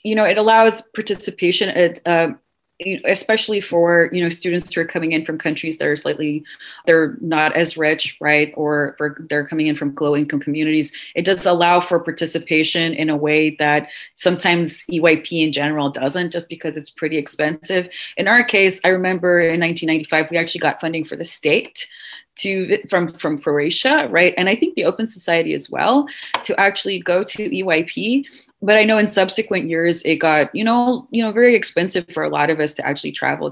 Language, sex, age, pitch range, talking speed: English, female, 30-49, 155-190 Hz, 190 wpm